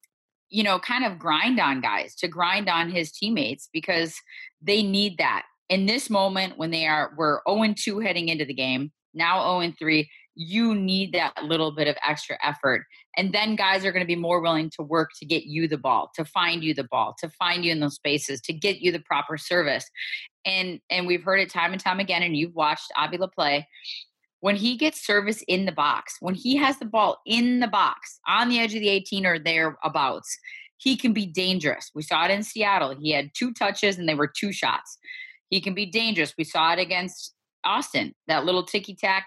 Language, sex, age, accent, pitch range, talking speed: English, female, 30-49, American, 160-210 Hz, 210 wpm